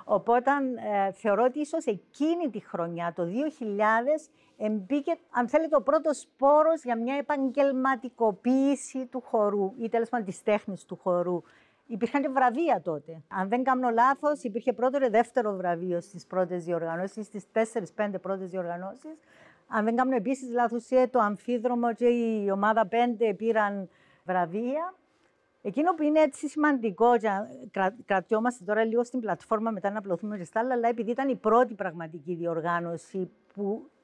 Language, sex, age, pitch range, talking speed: Greek, female, 50-69, 200-265 Hz, 150 wpm